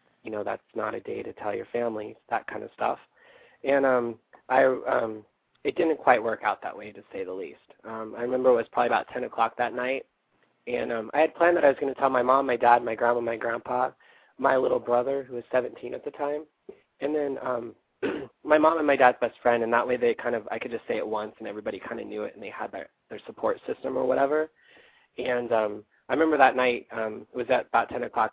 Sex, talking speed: male, 250 wpm